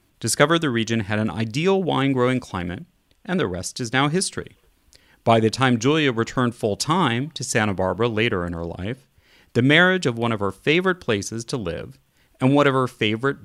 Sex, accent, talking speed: male, American, 190 wpm